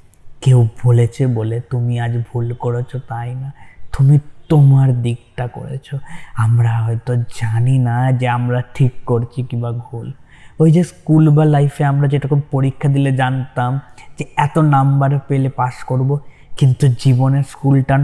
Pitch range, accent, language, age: 120-140 Hz, native, Bengali, 20-39